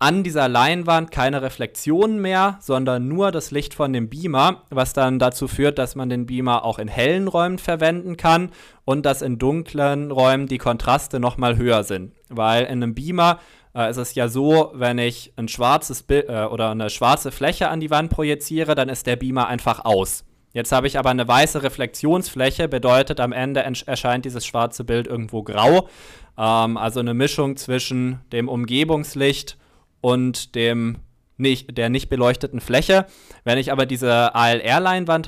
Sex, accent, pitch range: male, German, 120-145 Hz